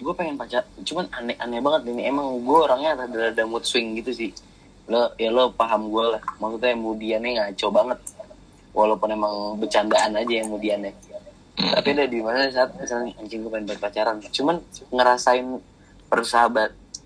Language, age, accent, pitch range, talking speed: Indonesian, 20-39, native, 105-120 Hz, 160 wpm